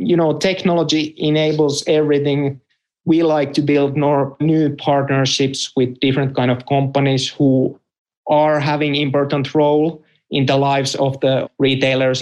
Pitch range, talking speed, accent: 135-150 Hz, 135 wpm, Finnish